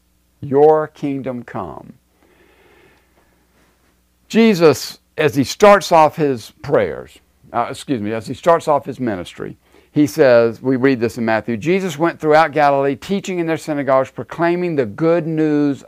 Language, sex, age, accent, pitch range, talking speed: English, male, 60-79, American, 115-165 Hz, 145 wpm